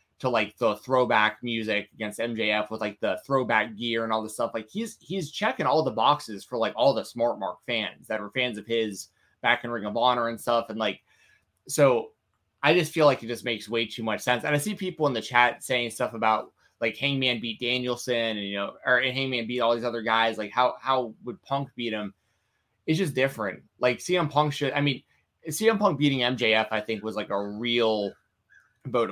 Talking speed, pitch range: 220 wpm, 105-130 Hz